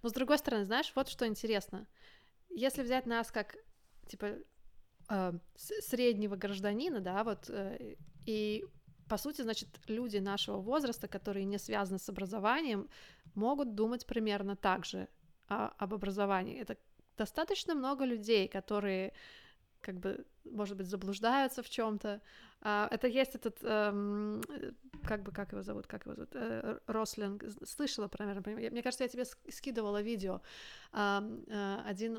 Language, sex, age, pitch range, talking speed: Russian, female, 20-39, 195-225 Hz, 130 wpm